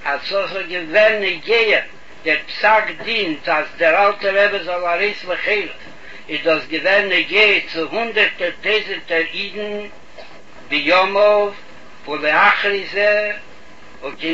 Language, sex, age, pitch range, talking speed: Hebrew, male, 60-79, 180-220 Hz, 100 wpm